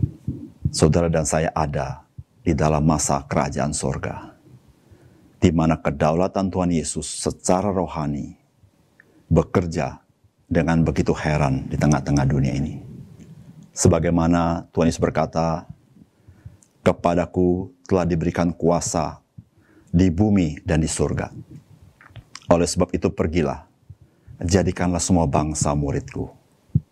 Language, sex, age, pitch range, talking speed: Indonesian, male, 50-69, 80-90 Hz, 100 wpm